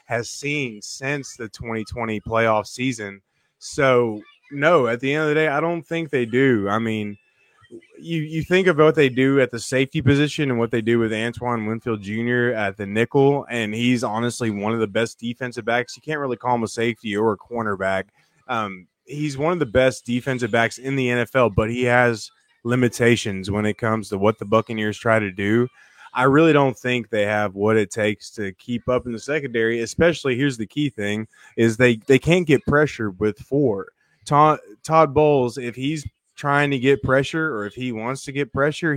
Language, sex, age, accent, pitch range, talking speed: English, male, 20-39, American, 110-135 Hz, 205 wpm